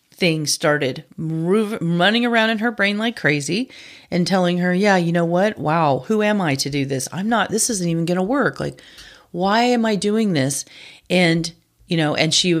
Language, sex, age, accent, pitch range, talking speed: English, female, 40-59, American, 160-200 Hz, 200 wpm